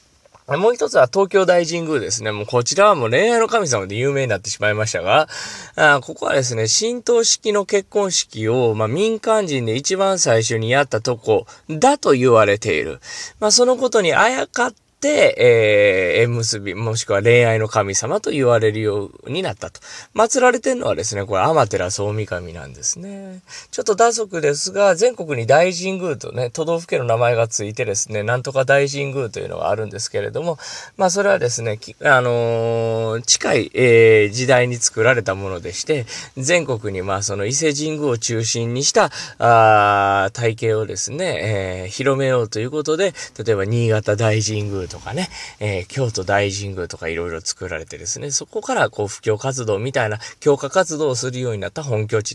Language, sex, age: Japanese, male, 20-39